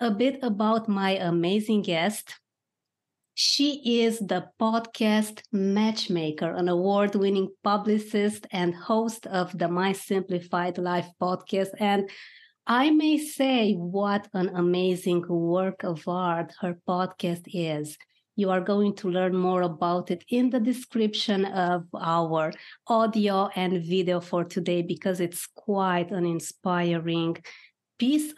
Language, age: English, 20-39